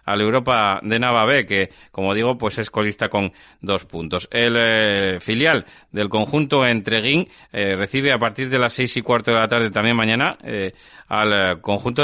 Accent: Spanish